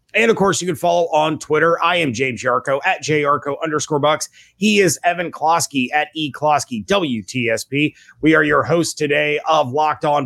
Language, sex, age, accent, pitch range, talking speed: English, male, 30-49, American, 135-175 Hz, 180 wpm